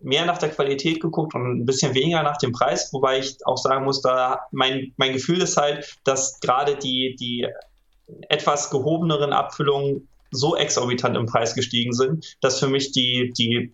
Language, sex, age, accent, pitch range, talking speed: German, male, 20-39, German, 115-145 Hz, 180 wpm